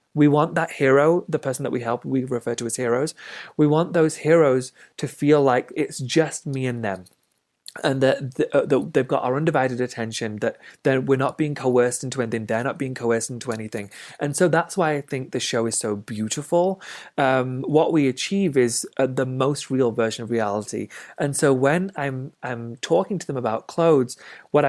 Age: 30-49